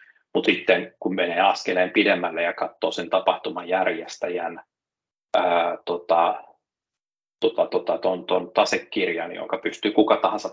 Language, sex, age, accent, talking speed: Finnish, male, 30-49, native, 110 wpm